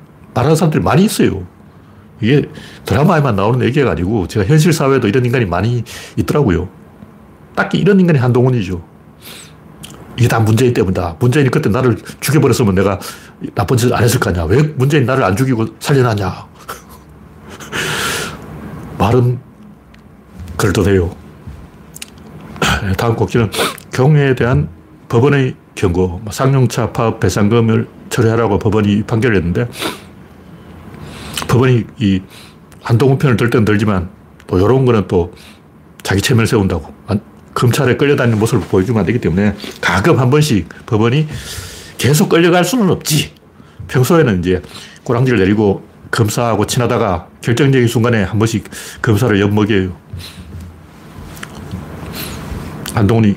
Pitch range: 95-130 Hz